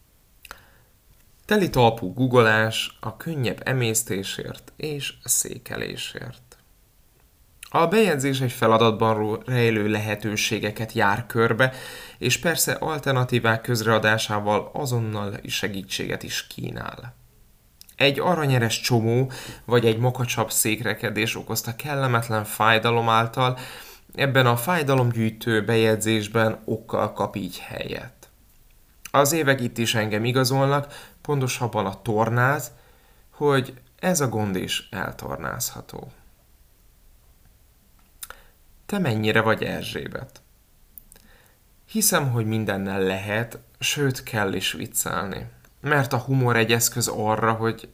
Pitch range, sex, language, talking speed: 110-130 Hz, male, Hungarian, 95 wpm